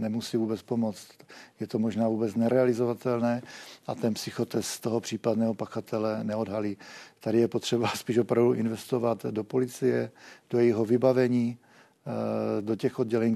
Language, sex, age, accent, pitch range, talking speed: Czech, male, 40-59, native, 110-120 Hz, 135 wpm